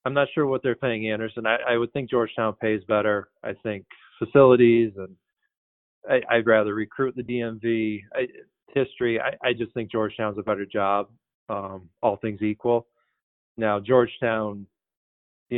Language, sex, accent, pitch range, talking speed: English, male, American, 105-120 Hz, 150 wpm